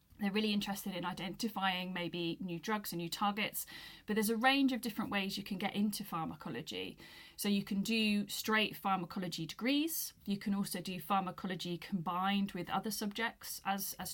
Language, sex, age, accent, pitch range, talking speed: English, female, 30-49, British, 175-210 Hz, 175 wpm